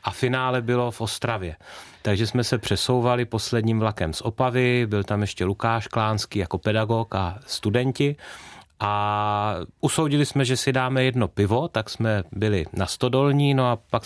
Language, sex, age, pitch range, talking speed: Czech, male, 30-49, 105-125 Hz, 160 wpm